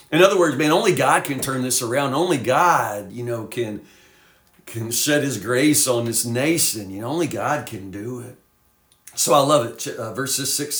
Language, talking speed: English, 200 wpm